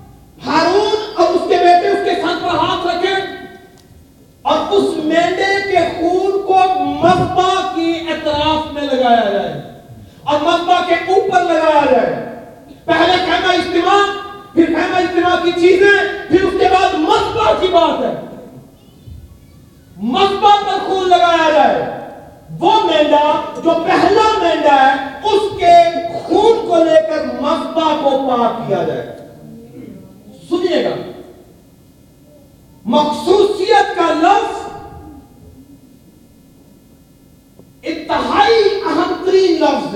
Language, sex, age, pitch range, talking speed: Urdu, male, 40-59, 330-380 Hz, 115 wpm